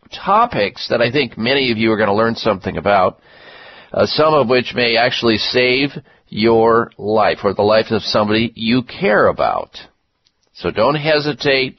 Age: 40-59